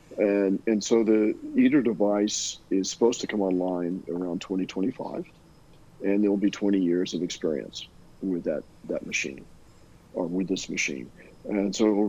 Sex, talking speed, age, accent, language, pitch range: male, 165 wpm, 50-69, American, English, 95-105 Hz